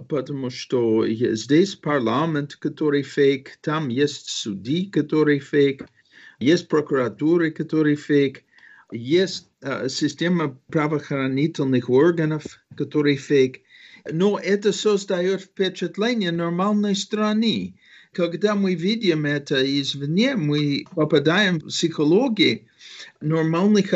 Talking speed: 95 wpm